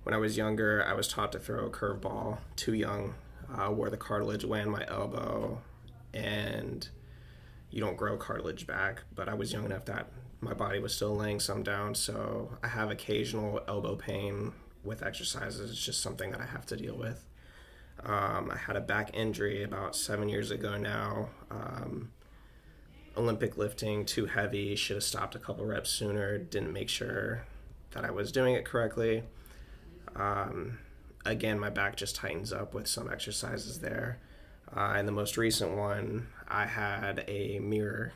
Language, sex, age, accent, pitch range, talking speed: English, male, 20-39, American, 100-110 Hz, 175 wpm